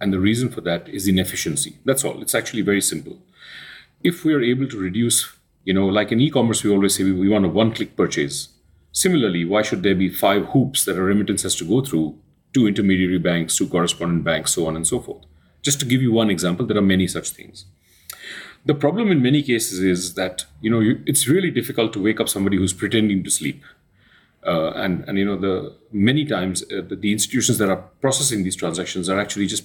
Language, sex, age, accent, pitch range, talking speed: English, male, 40-59, Indian, 95-125 Hz, 220 wpm